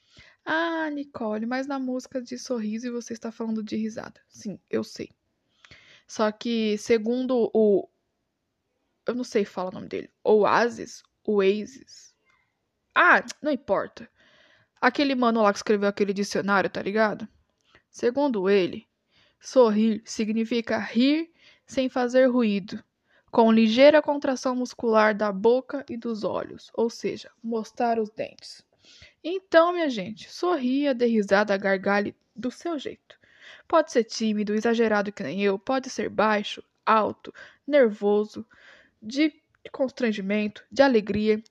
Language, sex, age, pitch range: Portuguese, female, 10-29, 210-255 Hz